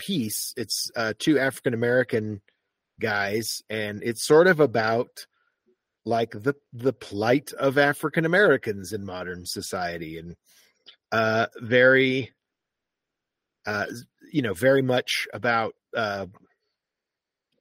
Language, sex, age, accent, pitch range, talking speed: English, male, 40-59, American, 115-165 Hz, 110 wpm